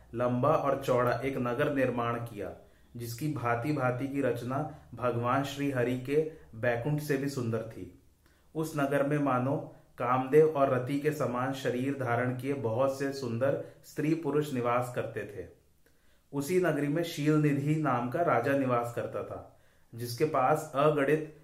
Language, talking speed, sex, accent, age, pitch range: Hindi, 155 wpm, male, native, 30-49, 120-145 Hz